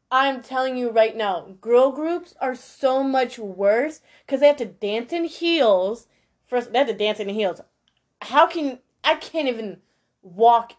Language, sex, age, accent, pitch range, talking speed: English, female, 20-39, American, 210-275 Hz, 165 wpm